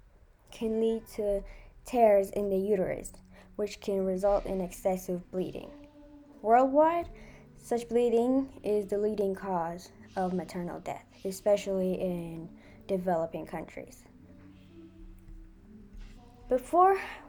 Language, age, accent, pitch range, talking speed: English, 10-29, American, 185-225 Hz, 95 wpm